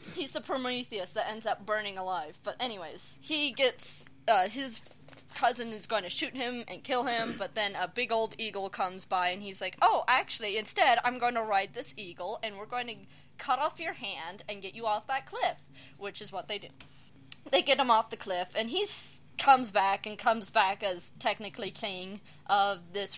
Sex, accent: female, American